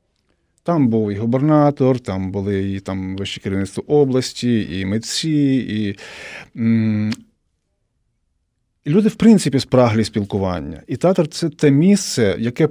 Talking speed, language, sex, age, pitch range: 125 wpm, Ukrainian, male, 40-59, 100-145 Hz